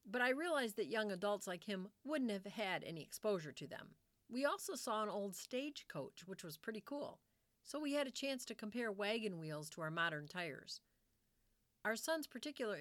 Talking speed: 190 wpm